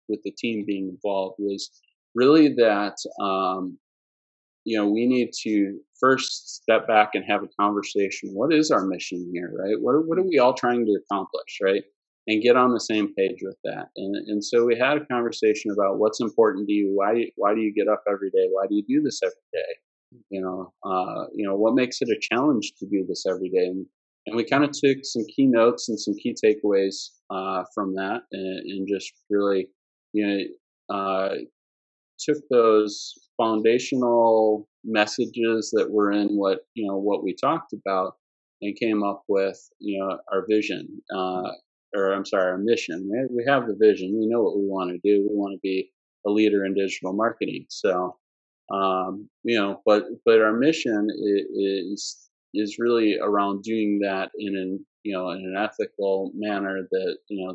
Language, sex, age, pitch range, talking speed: English, male, 30-49, 95-115 Hz, 190 wpm